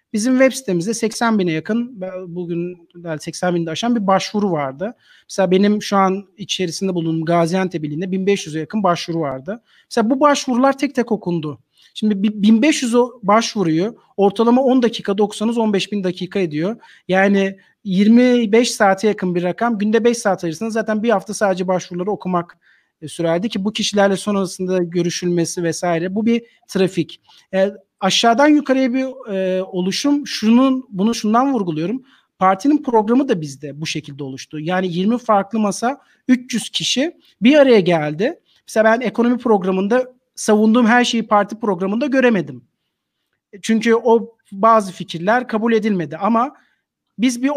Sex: male